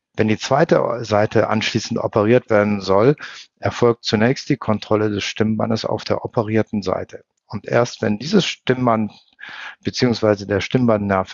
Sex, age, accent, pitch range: male, 50-69, German, 105-120 Hz